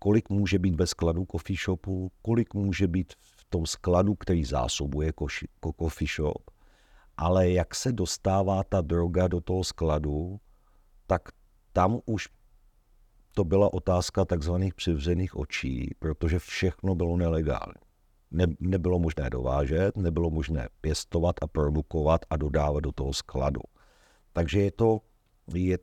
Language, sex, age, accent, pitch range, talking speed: Czech, male, 50-69, native, 80-95 Hz, 130 wpm